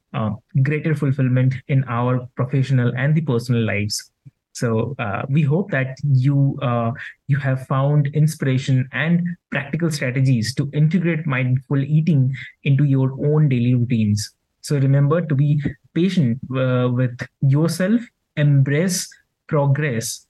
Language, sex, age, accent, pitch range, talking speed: English, male, 20-39, Indian, 125-150 Hz, 125 wpm